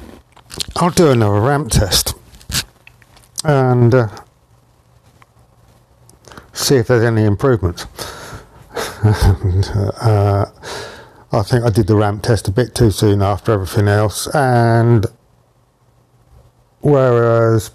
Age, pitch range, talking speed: 50-69, 105-125 Hz, 100 wpm